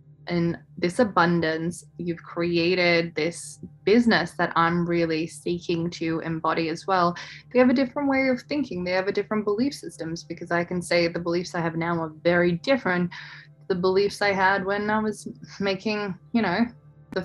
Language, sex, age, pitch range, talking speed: English, female, 20-39, 165-200 Hz, 175 wpm